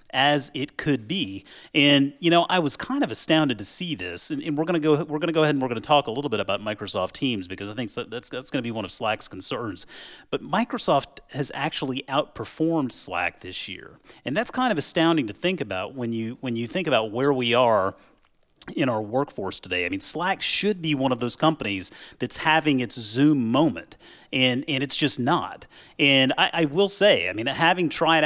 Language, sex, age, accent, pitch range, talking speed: English, male, 30-49, American, 120-155 Hz, 225 wpm